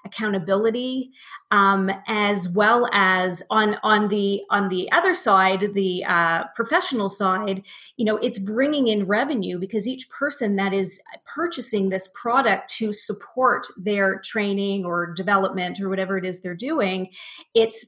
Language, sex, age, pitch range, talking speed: English, female, 30-49, 195-245 Hz, 145 wpm